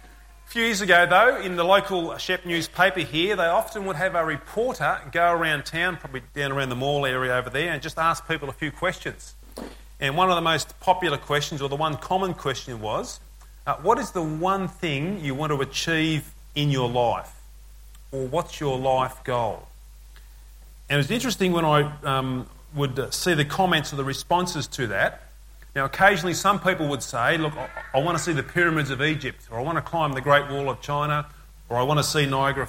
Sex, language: male, English